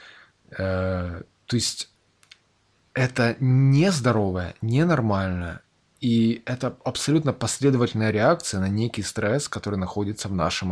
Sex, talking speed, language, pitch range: male, 100 wpm, Russian, 105-125 Hz